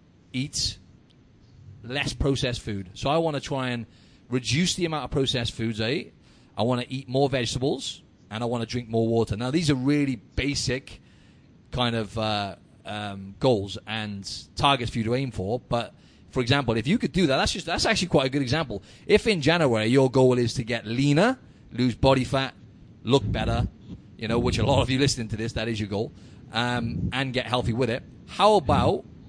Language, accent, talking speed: English, British, 205 wpm